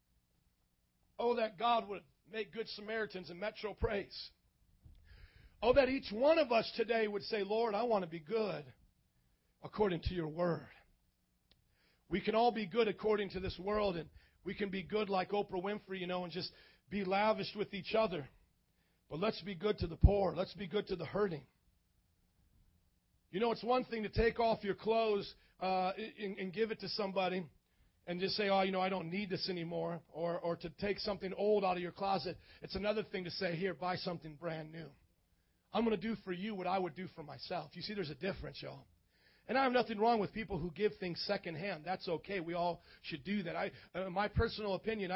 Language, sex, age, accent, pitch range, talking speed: English, male, 40-59, American, 170-210 Hz, 210 wpm